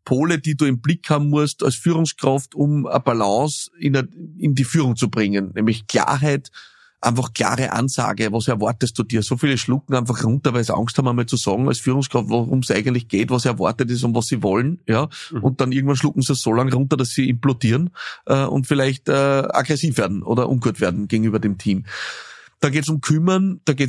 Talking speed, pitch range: 205 wpm, 120-145 Hz